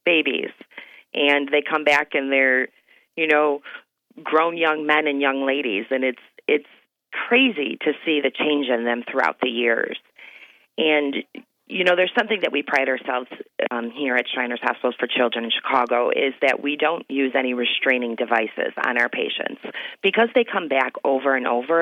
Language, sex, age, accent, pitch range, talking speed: English, female, 40-59, American, 130-155 Hz, 175 wpm